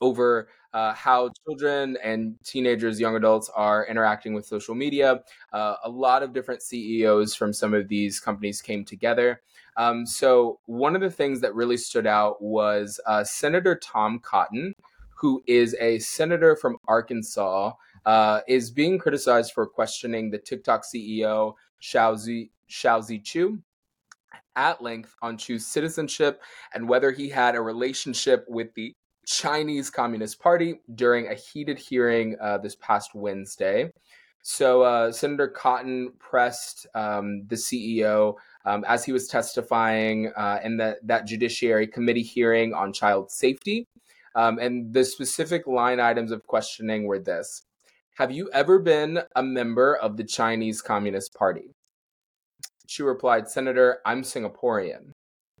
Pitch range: 110-130 Hz